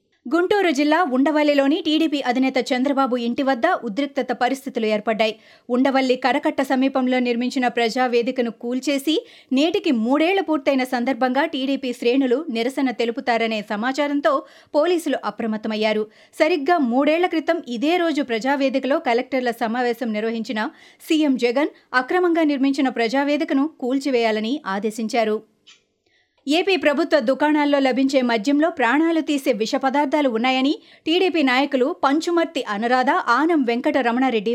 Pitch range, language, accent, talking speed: 235-300 Hz, Telugu, native, 105 wpm